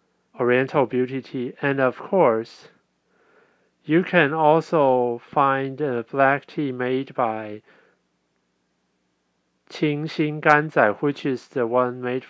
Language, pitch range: Chinese, 110-145 Hz